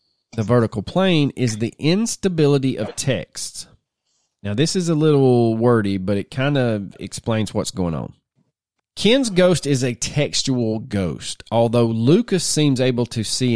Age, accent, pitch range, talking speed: 30-49, American, 110-140 Hz, 150 wpm